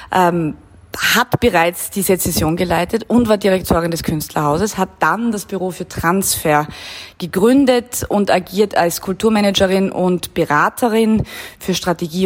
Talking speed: 125 wpm